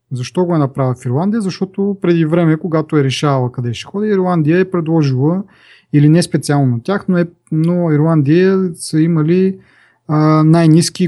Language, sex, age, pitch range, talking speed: Bulgarian, male, 30-49, 125-175 Hz, 150 wpm